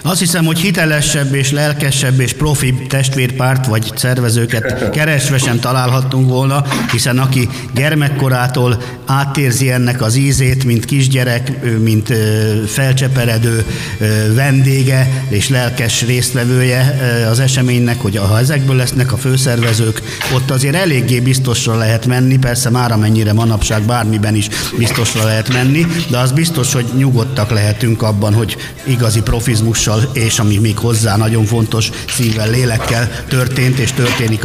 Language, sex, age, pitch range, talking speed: Hungarian, male, 50-69, 115-135 Hz, 130 wpm